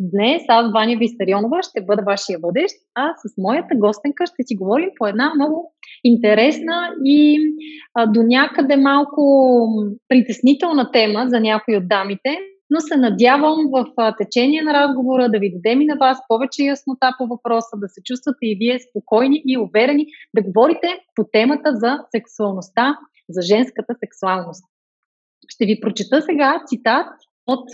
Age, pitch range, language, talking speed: 30-49, 215-285 Hz, Bulgarian, 150 wpm